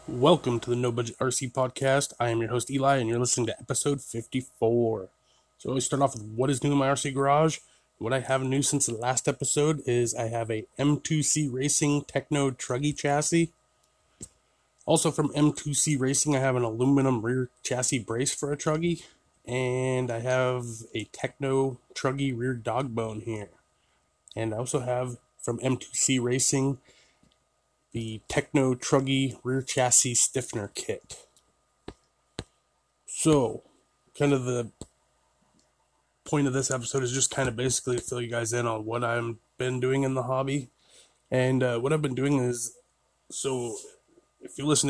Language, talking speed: English, 165 wpm